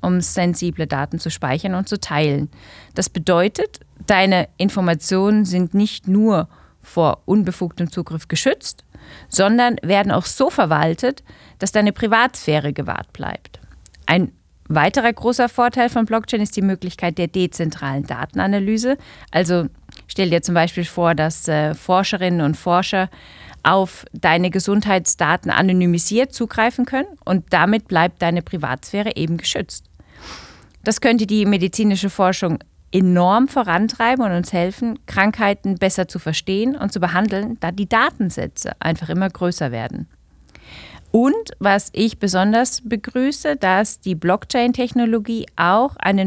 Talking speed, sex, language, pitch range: 125 wpm, female, English, 175-220 Hz